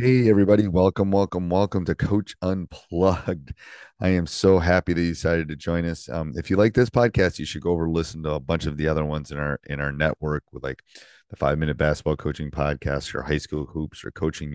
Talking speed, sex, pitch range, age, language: 225 wpm, male, 75-90 Hz, 30-49, English